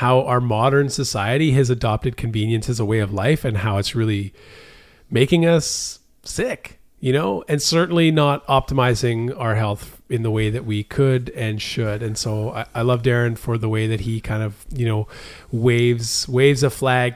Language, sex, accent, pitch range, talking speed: English, male, American, 110-135 Hz, 190 wpm